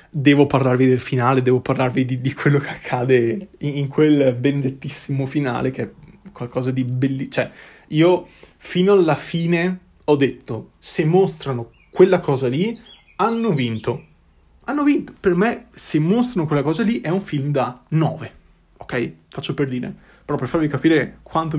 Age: 20-39